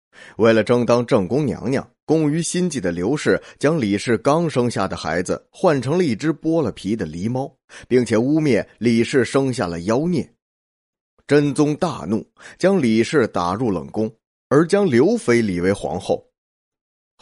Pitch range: 100-145 Hz